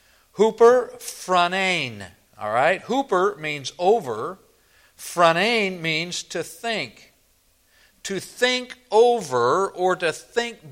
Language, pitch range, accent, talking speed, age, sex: English, 145-220 Hz, American, 95 wpm, 50-69, male